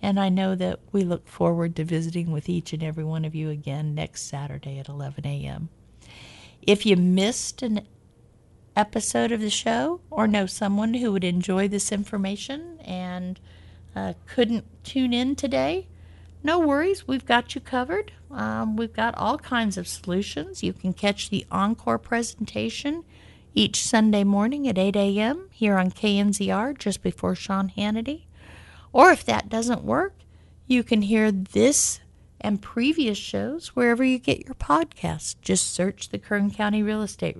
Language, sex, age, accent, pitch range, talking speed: English, female, 50-69, American, 160-225 Hz, 160 wpm